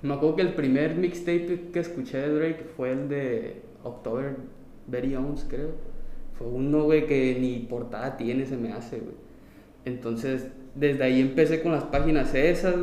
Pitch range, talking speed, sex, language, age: 120-145 Hz, 170 wpm, male, Spanish, 20-39